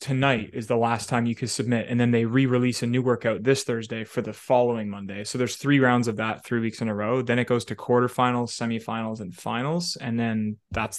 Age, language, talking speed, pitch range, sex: 20-39, English, 235 wpm, 110-125 Hz, male